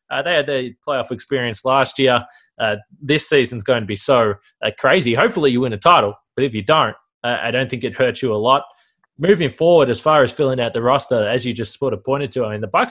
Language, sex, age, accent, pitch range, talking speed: English, male, 20-39, Australian, 115-145 Hz, 255 wpm